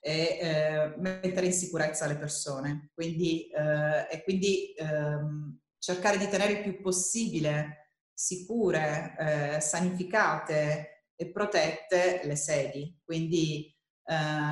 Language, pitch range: Italian, 155-195 Hz